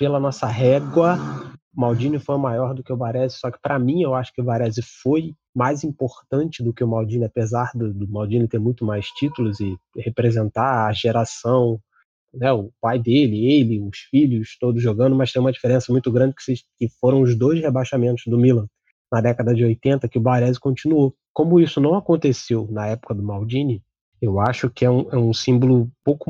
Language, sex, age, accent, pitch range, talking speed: Portuguese, male, 20-39, Brazilian, 115-140 Hz, 205 wpm